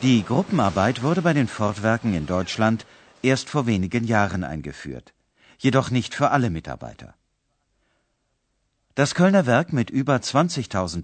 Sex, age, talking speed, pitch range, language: male, 50-69, 130 wpm, 100-135 Hz, Bulgarian